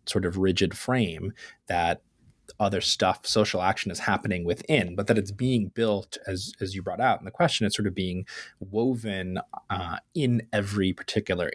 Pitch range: 95-115 Hz